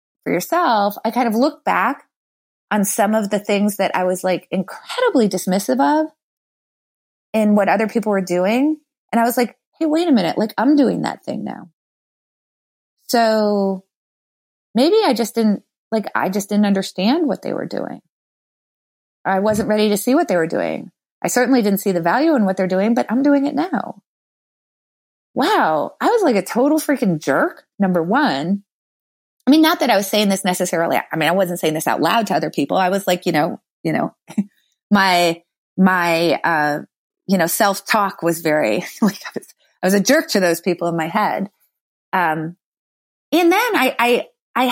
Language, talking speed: English, 190 wpm